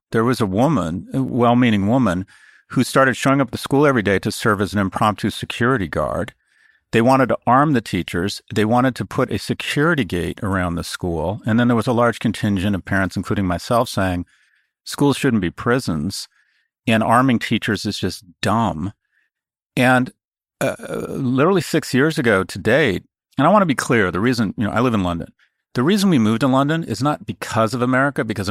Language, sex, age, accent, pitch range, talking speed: English, male, 50-69, American, 100-130 Hz, 200 wpm